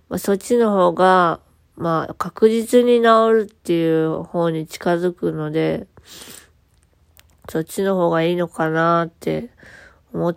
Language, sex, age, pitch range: Japanese, female, 20-39, 160-220 Hz